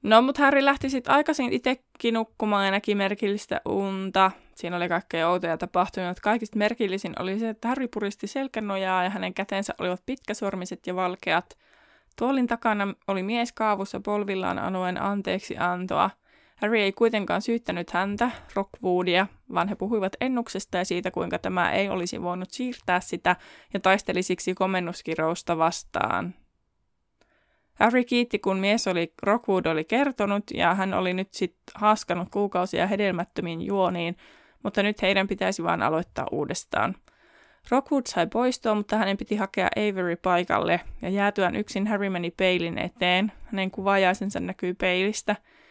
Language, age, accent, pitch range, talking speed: Finnish, 20-39, native, 180-220 Hz, 140 wpm